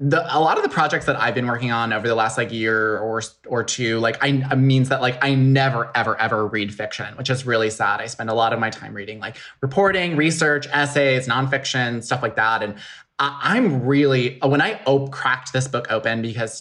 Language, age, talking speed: English, 20-39, 225 wpm